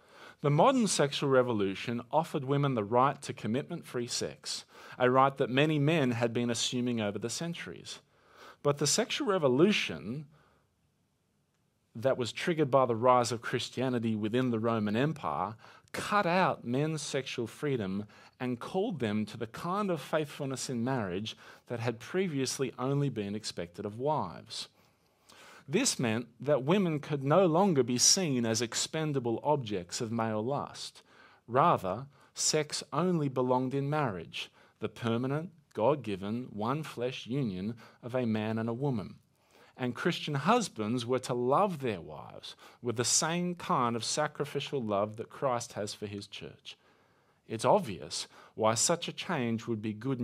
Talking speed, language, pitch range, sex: 145 wpm, English, 115-150 Hz, male